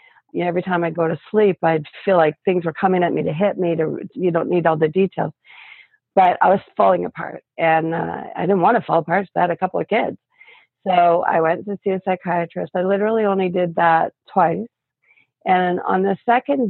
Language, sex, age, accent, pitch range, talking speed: English, female, 40-59, American, 170-195 Hz, 225 wpm